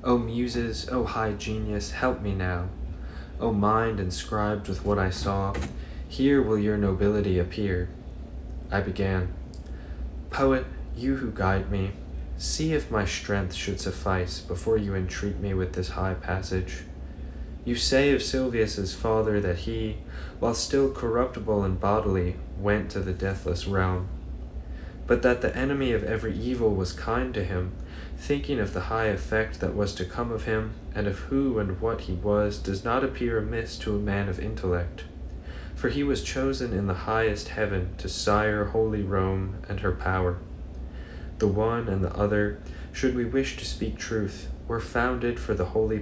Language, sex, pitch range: English, male, 85-110 Hz